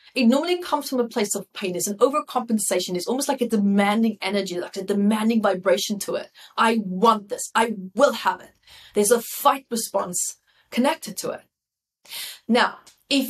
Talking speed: 175 wpm